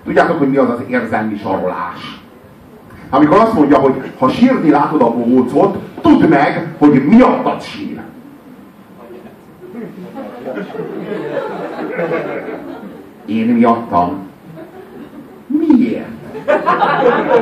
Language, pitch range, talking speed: Hungarian, 150-255 Hz, 85 wpm